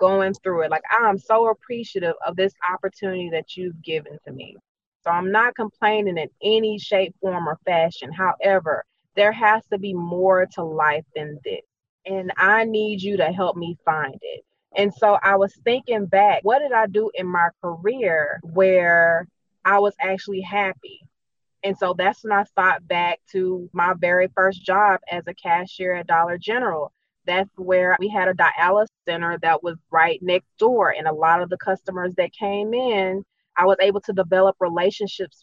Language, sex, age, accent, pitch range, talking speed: English, female, 20-39, American, 175-210 Hz, 180 wpm